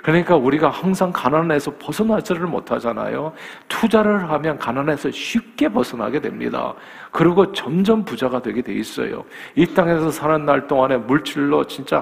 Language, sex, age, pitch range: Korean, male, 40-59, 120-155 Hz